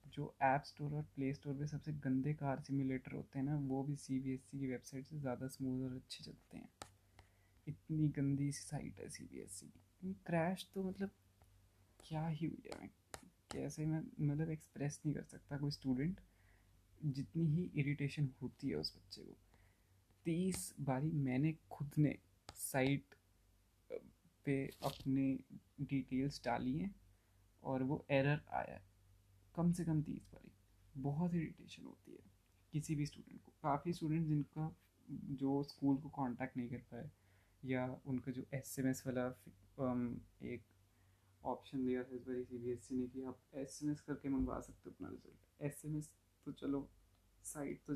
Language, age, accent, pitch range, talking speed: Hindi, 20-39, native, 110-145 Hz, 150 wpm